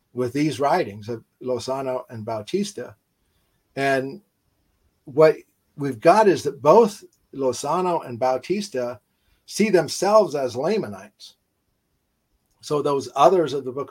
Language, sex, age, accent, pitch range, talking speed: English, male, 50-69, American, 120-150 Hz, 115 wpm